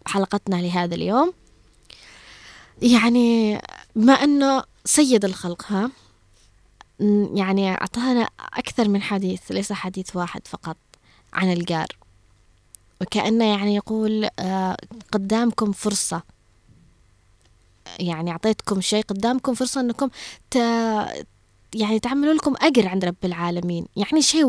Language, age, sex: Arabic, 20-39, female